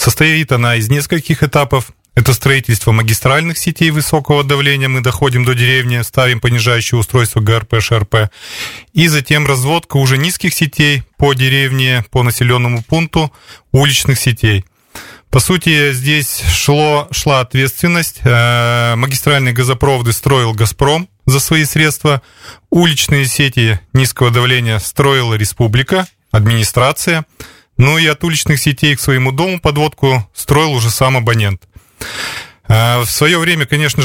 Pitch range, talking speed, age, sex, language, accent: 120-150 Hz, 120 wpm, 20-39, male, Russian, native